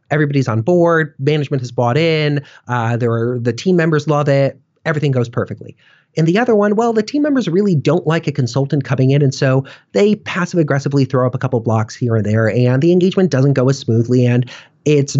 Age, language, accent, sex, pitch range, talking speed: 40-59, English, American, male, 125-160 Hz, 215 wpm